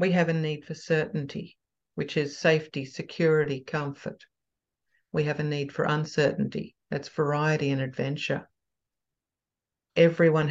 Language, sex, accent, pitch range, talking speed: English, female, Australian, 150-175 Hz, 125 wpm